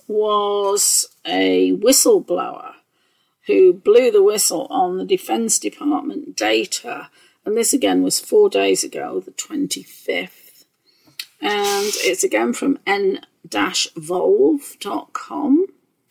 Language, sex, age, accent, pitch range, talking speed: English, female, 40-59, British, 245-390 Hz, 95 wpm